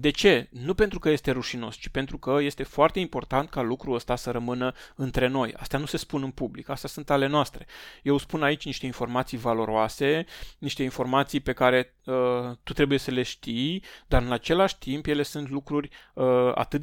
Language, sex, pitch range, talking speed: Romanian, male, 125-150 Hz, 190 wpm